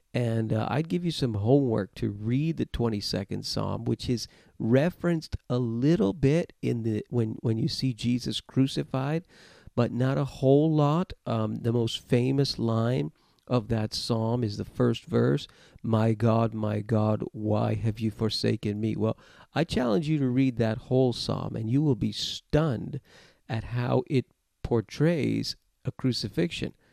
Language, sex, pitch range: English, male, 110-135 Hz